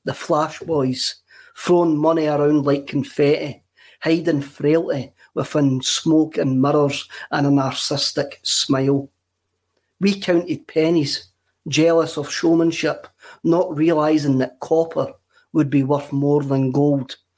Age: 40-59